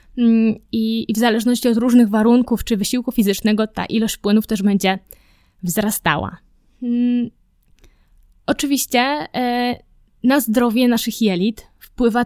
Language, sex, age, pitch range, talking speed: Polish, female, 20-39, 205-245 Hz, 105 wpm